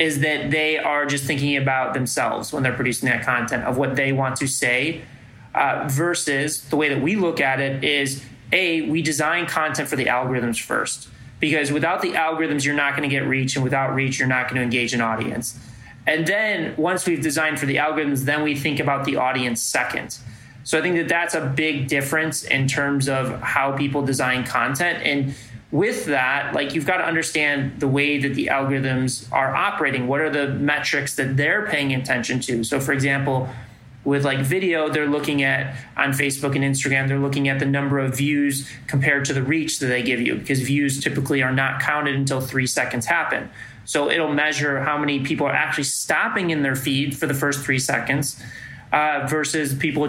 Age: 20-39